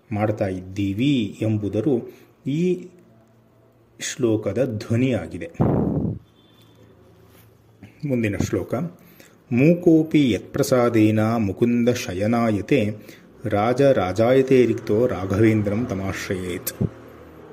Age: 30-49